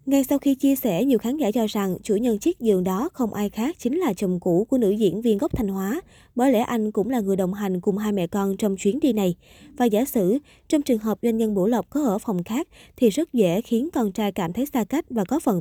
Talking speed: 280 wpm